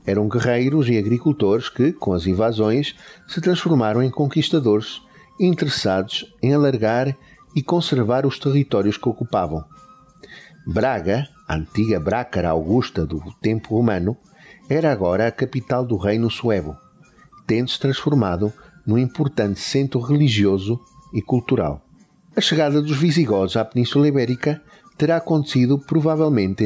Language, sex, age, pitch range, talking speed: Portuguese, male, 50-69, 110-150 Hz, 120 wpm